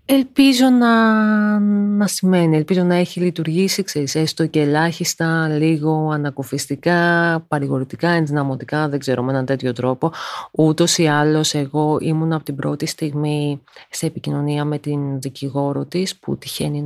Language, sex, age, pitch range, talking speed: Greek, female, 30-49, 145-180 Hz, 135 wpm